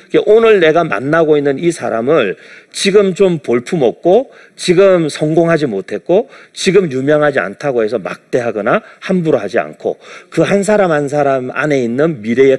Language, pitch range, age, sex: Korean, 145-205 Hz, 40-59, male